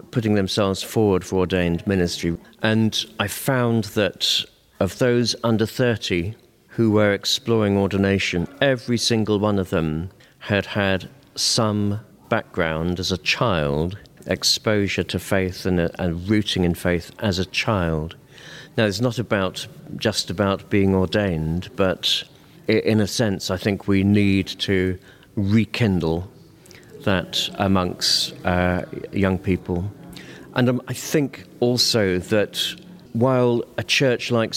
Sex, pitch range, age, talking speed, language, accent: male, 95-115 Hz, 50-69, 130 wpm, English, British